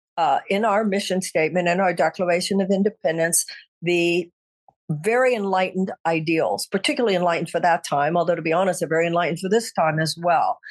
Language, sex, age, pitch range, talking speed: English, female, 50-69, 170-200 Hz, 170 wpm